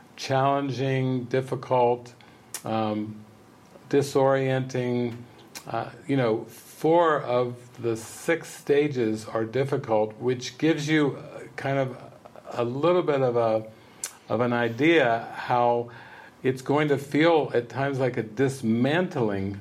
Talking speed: 115 wpm